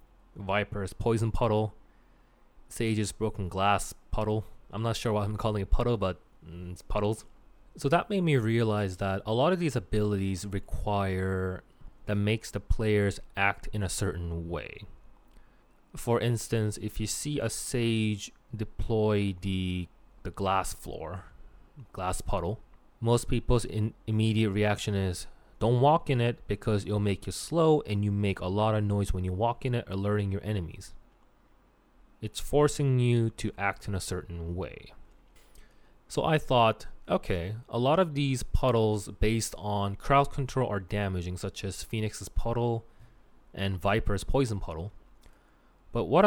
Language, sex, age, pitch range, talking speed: English, male, 20-39, 95-115 Hz, 155 wpm